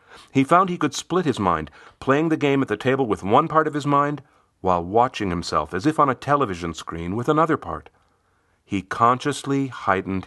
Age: 40-59